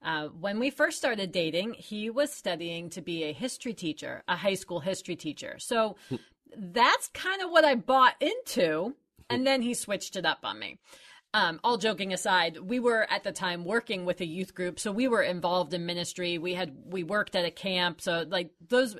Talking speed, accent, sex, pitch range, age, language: 205 wpm, American, female, 185-255 Hz, 30-49, English